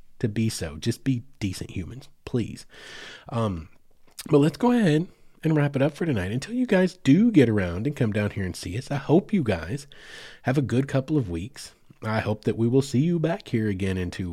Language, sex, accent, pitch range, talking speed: English, male, American, 95-135 Hz, 225 wpm